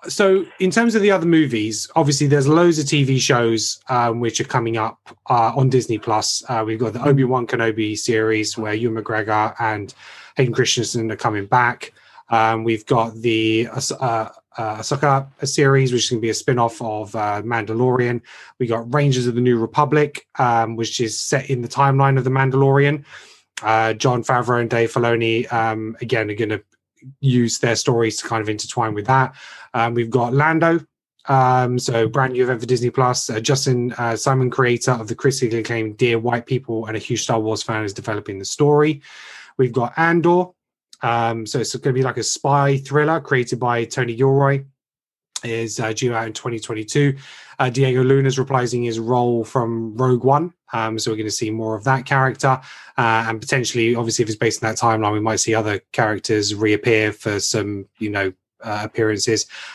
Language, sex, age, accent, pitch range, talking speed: English, male, 20-39, British, 110-135 Hz, 190 wpm